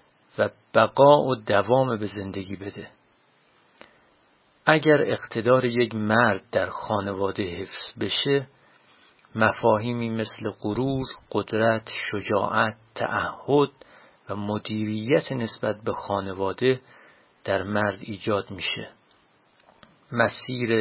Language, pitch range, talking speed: Persian, 105-135 Hz, 90 wpm